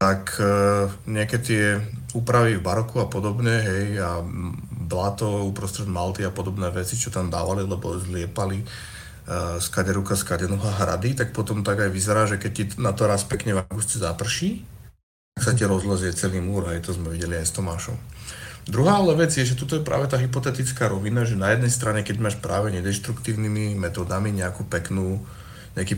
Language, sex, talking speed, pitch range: Slovak, male, 175 wpm, 95-115 Hz